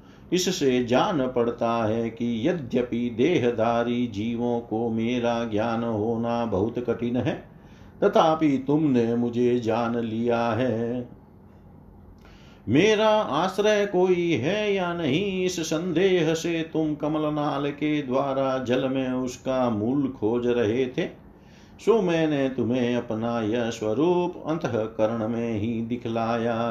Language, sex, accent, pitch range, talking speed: Hindi, male, native, 115-150 Hz, 115 wpm